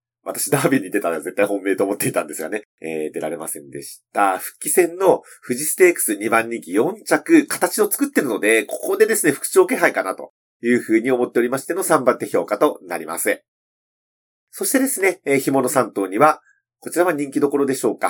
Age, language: 40-59, Japanese